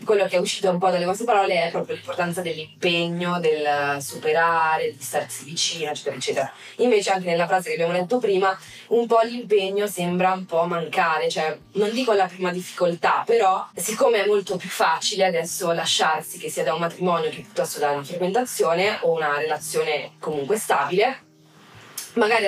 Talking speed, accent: 175 wpm, native